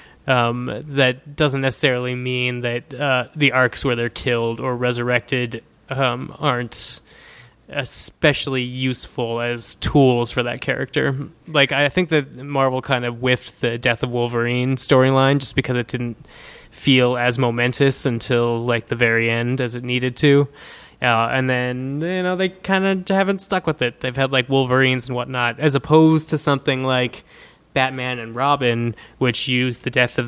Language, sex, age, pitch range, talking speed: English, male, 20-39, 120-135 Hz, 165 wpm